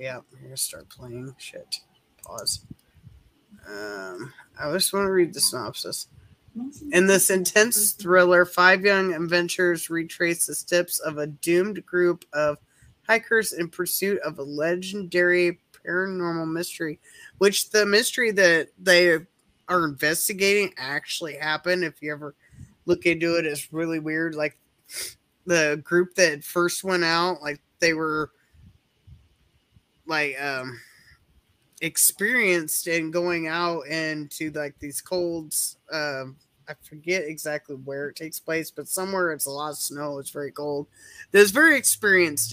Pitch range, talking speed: 150-180 Hz, 135 wpm